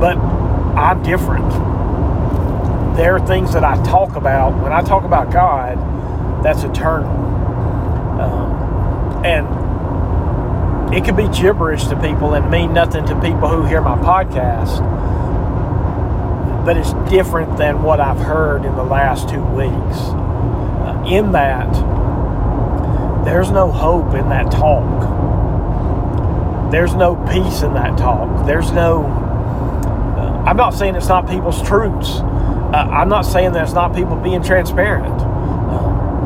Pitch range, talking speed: 90-105 Hz, 130 wpm